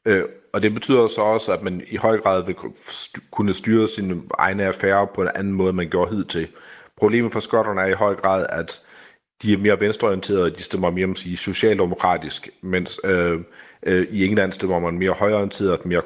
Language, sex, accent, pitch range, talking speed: Danish, male, native, 90-105 Hz, 200 wpm